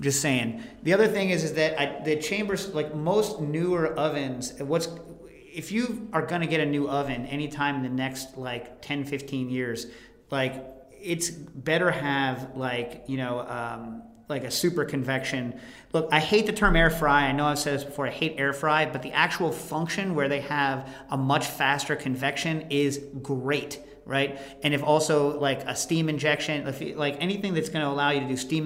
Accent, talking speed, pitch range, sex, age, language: American, 195 wpm, 135-155 Hz, male, 40-59, English